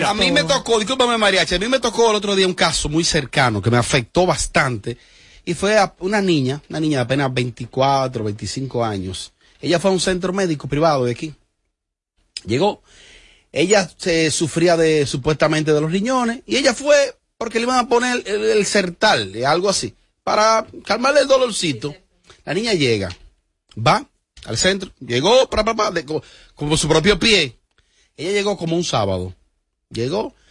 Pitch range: 120-190 Hz